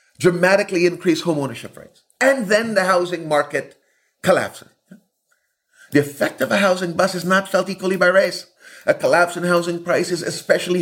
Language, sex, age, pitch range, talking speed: English, male, 40-59, 120-175 Hz, 160 wpm